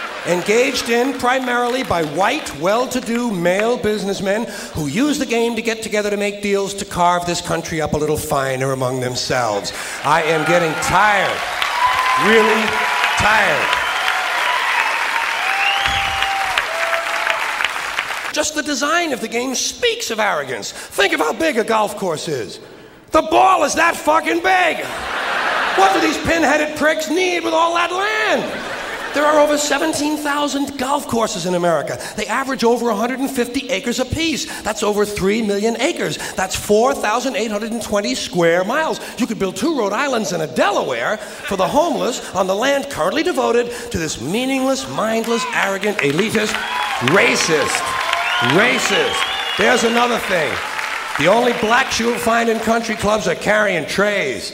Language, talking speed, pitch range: English, 140 wpm, 205-285 Hz